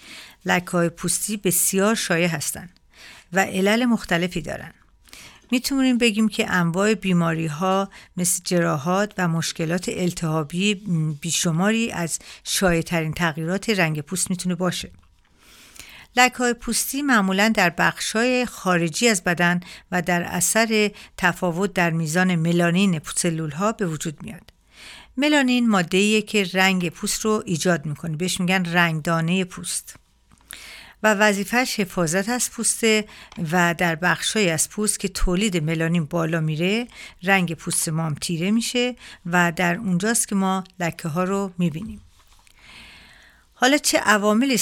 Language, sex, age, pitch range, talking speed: Persian, female, 50-69, 170-210 Hz, 125 wpm